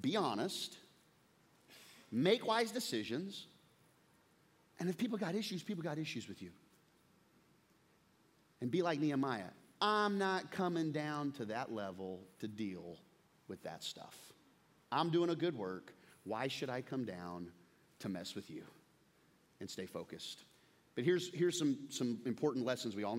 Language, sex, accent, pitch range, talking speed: English, male, American, 125-180 Hz, 150 wpm